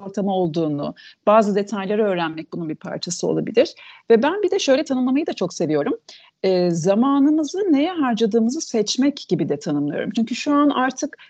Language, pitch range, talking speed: Turkish, 195-285 Hz, 160 wpm